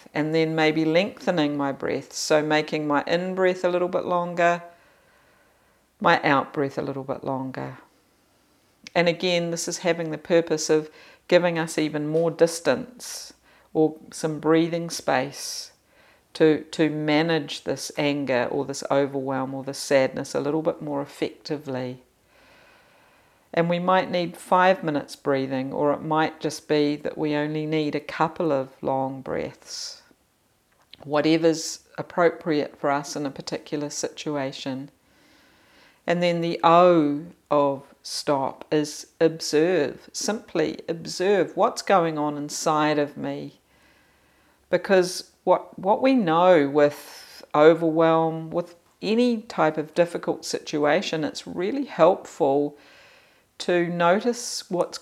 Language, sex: English, female